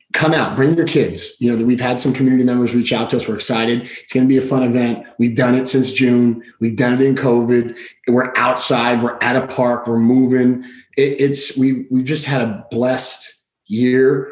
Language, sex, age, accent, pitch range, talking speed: English, male, 30-49, American, 120-135 Hz, 220 wpm